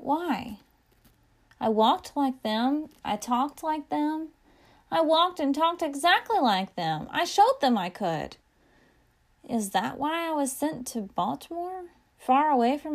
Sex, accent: female, American